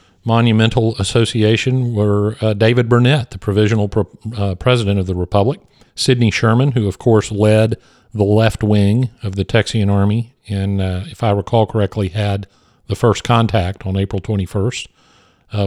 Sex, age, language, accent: male, 50-69, English, American